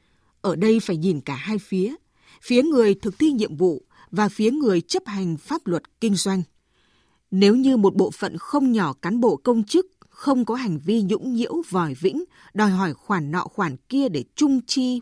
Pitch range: 190-260 Hz